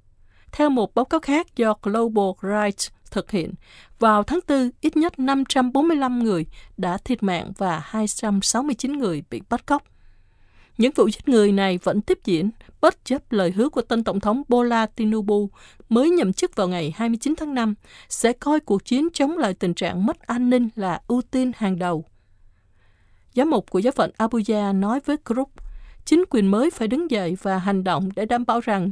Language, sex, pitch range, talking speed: Vietnamese, female, 185-250 Hz, 185 wpm